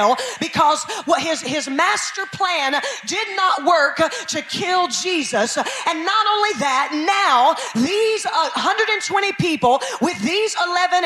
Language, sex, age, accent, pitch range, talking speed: English, female, 40-59, American, 325-425 Hz, 120 wpm